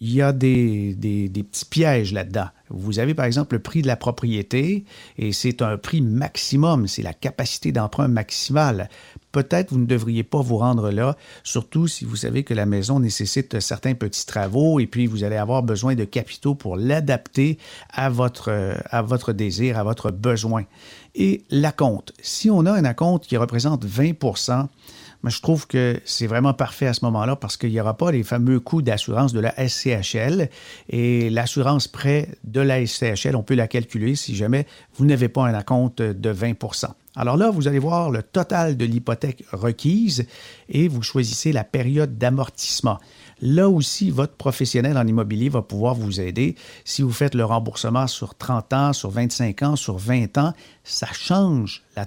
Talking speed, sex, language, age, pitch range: 185 wpm, male, French, 50-69, 115-140 Hz